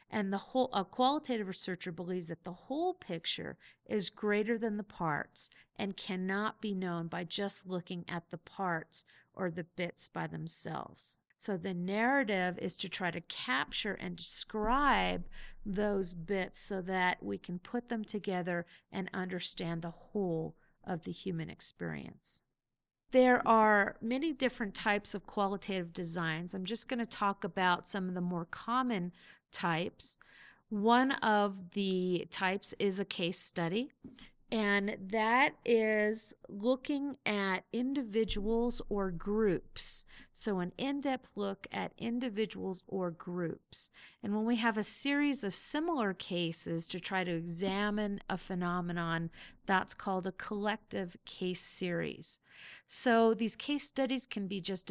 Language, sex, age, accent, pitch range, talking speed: English, female, 40-59, American, 180-230 Hz, 140 wpm